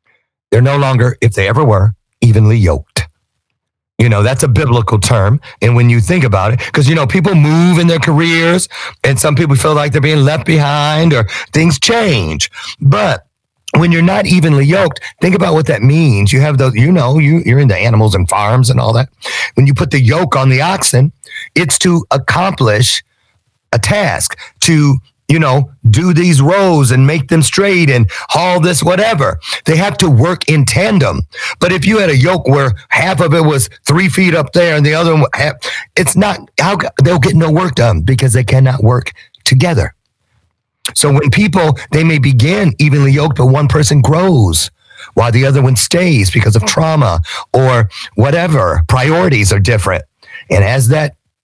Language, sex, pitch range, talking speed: English, male, 120-160 Hz, 185 wpm